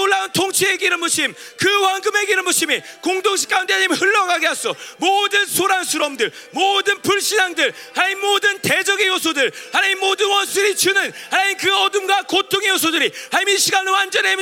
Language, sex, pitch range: Korean, male, 365-400 Hz